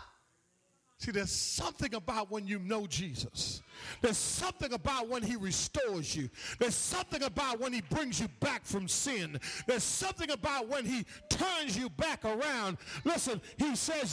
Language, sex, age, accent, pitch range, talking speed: English, male, 50-69, American, 170-275 Hz, 155 wpm